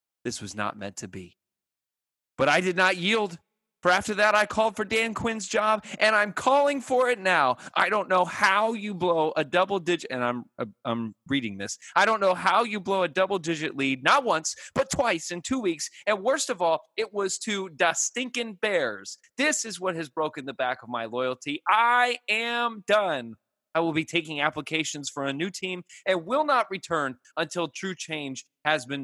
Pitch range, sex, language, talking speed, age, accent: 120-190 Hz, male, English, 205 wpm, 30-49, American